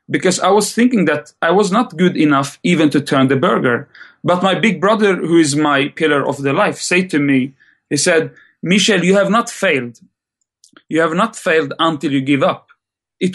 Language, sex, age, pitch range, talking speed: English, male, 30-49, 140-180 Hz, 200 wpm